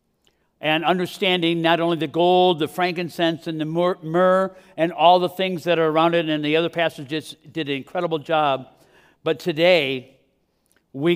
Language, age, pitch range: English, 60-79, 150-185 Hz